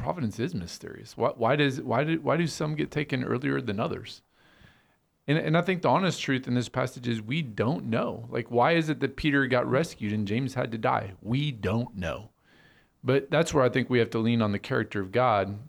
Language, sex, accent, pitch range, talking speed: English, male, American, 110-130 Hz, 230 wpm